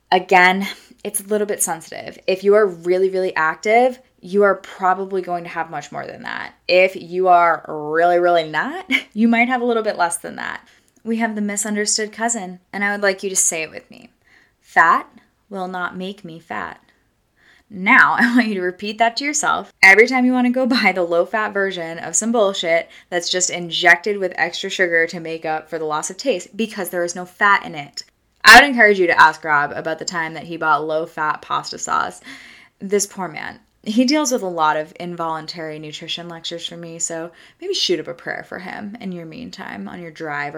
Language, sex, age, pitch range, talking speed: English, female, 10-29, 170-225 Hz, 215 wpm